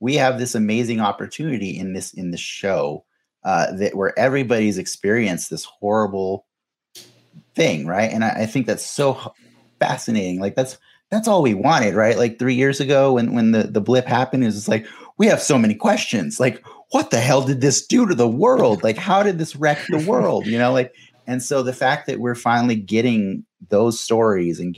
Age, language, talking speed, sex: 30-49, English, 200 wpm, male